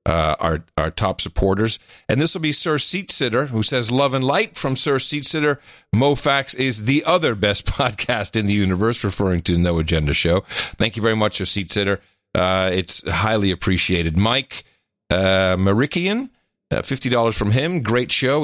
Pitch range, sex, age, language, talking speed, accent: 95-130 Hz, male, 50-69, English, 180 wpm, American